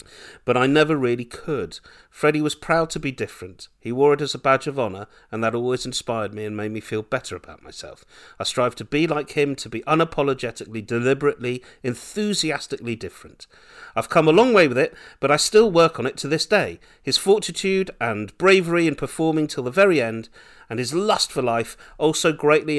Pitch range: 115-155 Hz